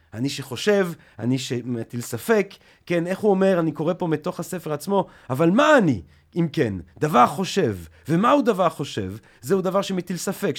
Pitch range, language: 140-200 Hz, Hebrew